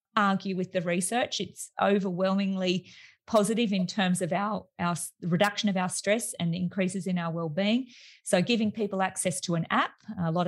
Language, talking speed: English, 170 wpm